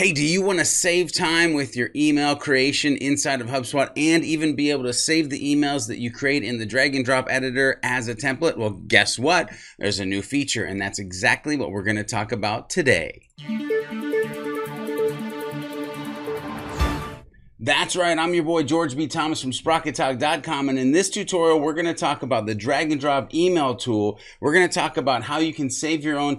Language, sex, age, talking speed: English, male, 30-49, 190 wpm